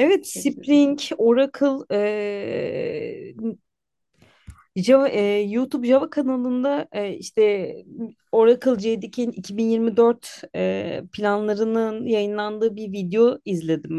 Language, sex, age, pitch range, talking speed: Turkish, female, 30-49, 190-245 Hz, 85 wpm